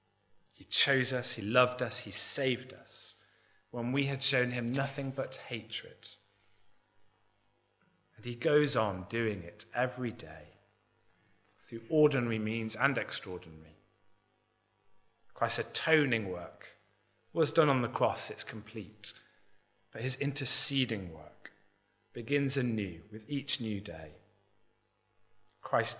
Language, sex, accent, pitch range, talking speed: English, male, British, 105-135 Hz, 120 wpm